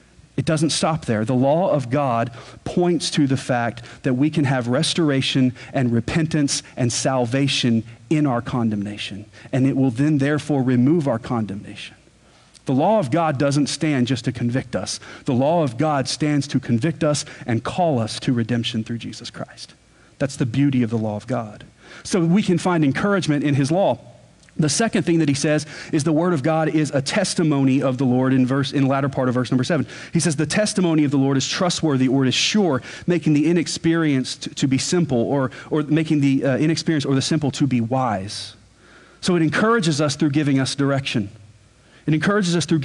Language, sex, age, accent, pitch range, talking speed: English, male, 40-59, American, 130-160 Hz, 200 wpm